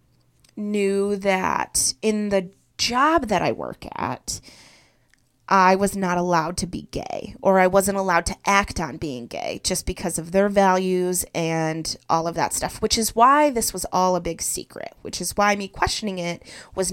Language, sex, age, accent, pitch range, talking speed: English, female, 30-49, American, 170-205 Hz, 180 wpm